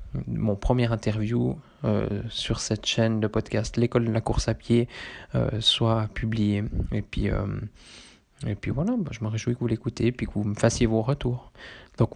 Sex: male